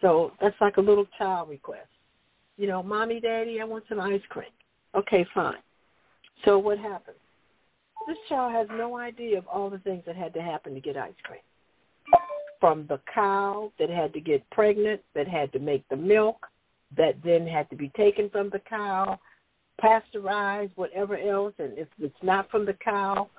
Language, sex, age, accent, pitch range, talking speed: English, female, 60-79, American, 175-220 Hz, 180 wpm